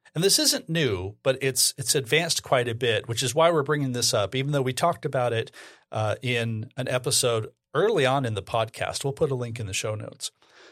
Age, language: 40-59, English